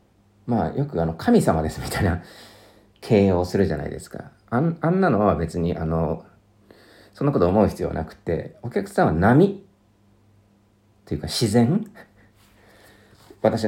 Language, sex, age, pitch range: Japanese, male, 40-59, 85-110 Hz